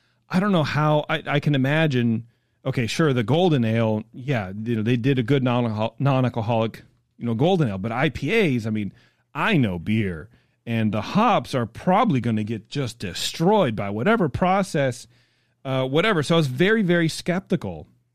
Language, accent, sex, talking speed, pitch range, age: English, American, male, 180 wpm, 115-140 Hz, 30-49